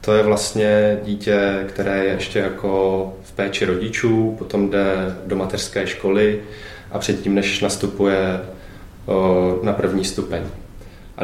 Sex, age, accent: male, 20-39, native